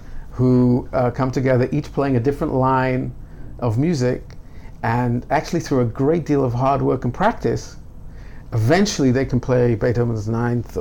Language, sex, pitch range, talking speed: English, male, 120-135 Hz, 155 wpm